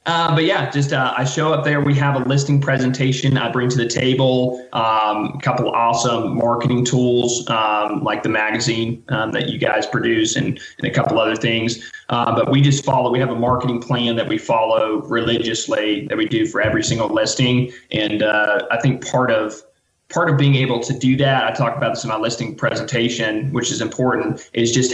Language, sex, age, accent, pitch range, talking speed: English, male, 20-39, American, 115-135 Hz, 205 wpm